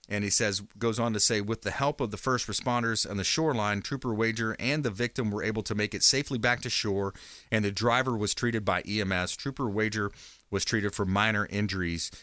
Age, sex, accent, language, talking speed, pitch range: 40-59, male, American, English, 220 wpm, 90-120 Hz